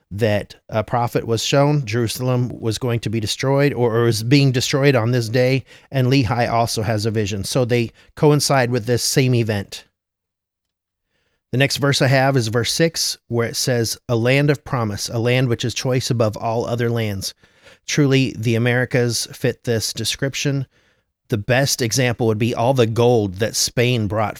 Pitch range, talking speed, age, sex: 105-130 Hz, 180 wpm, 30-49, male